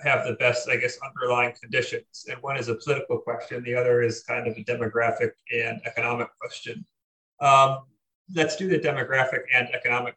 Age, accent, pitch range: 30-49, American, 120-145 Hz